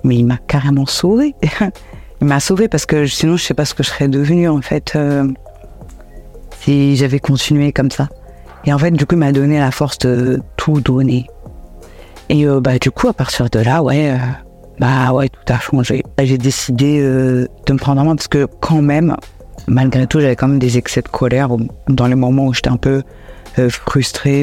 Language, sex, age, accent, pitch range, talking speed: French, female, 50-69, French, 130-150 Hz, 215 wpm